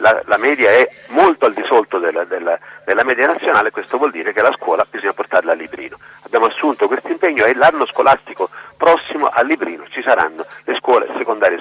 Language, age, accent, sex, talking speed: Italian, 40-59, native, male, 195 wpm